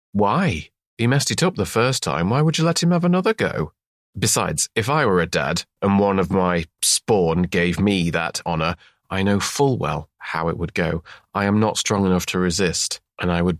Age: 30-49